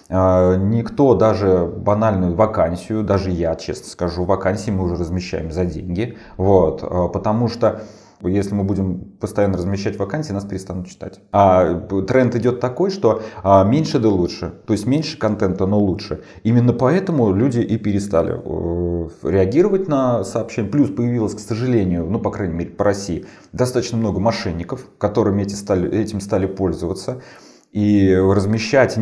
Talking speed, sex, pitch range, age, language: 145 wpm, male, 95-115 Hz, 30-49, Russian